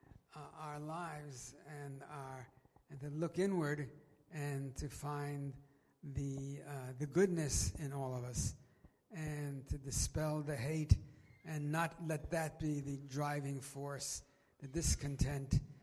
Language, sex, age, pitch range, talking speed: Italian, male, 60-79, 135-160 Hz, 135 wpm